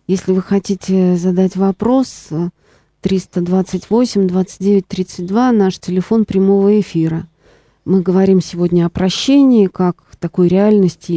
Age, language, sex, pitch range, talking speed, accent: 40-59, Russian, female, 175-210 Hz, 95 wpm, native